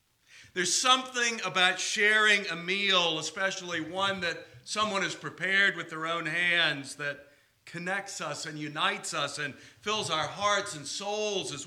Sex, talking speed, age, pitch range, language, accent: male, 150 wpm, 50-69, 130-185 Hz, English, American